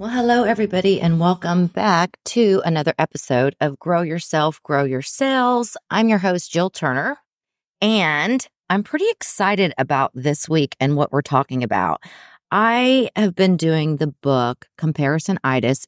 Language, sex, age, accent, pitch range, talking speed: English, female, 30-49, American, 135-170 Hz, 145 wpm